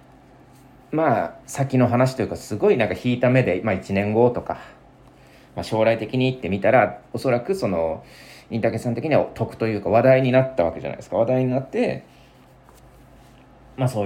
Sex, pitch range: male, 95-140 Hz